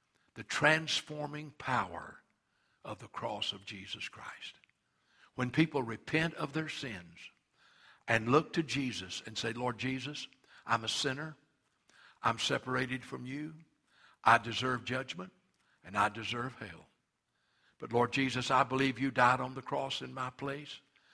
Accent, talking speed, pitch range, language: American, 140 wpm, 130-165 Hz, English